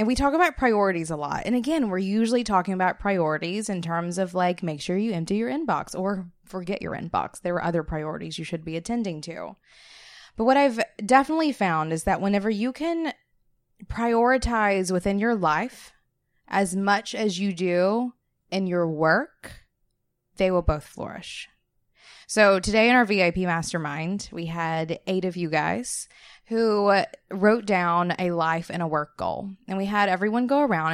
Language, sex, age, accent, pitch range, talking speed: English, female, 20-39, American, 170-230 Hz, 175 wpm